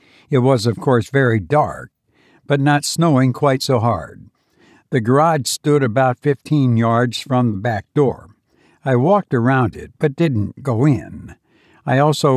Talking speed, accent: 155 wpm, American